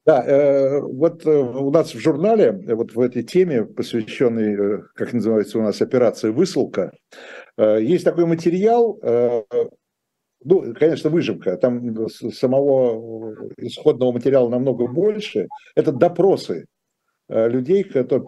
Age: 60-79